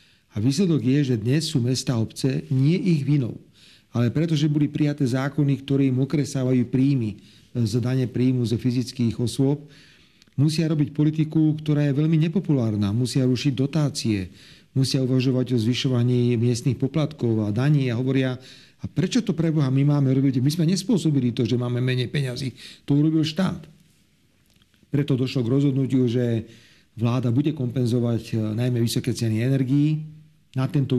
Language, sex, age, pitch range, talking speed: Slovak, male, 40-59, 120-145 Hz, 150 wpm